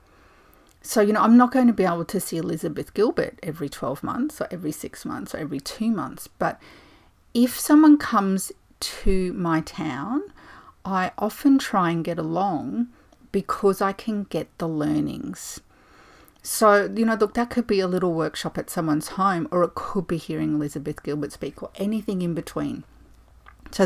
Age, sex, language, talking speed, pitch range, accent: 40-59, female, English, 175 wpm, 155-210 Hz, Australian